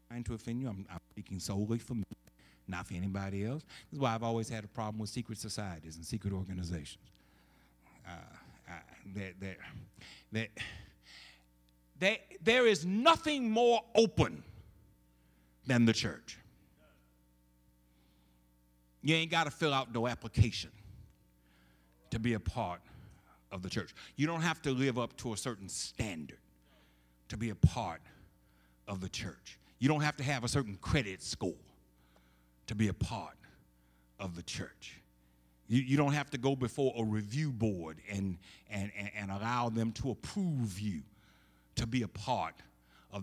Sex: male